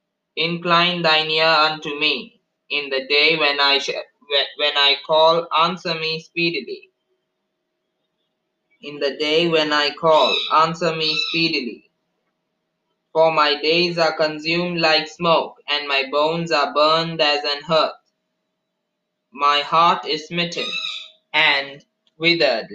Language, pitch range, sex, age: English, 145-165 Hz, male, 20-39